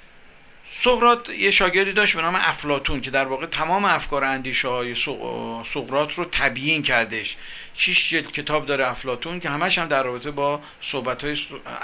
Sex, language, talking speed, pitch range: male, Persian, 150 wpm, 135-180 Hz